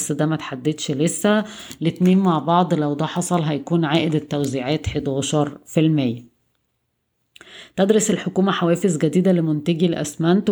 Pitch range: 155-175 Hz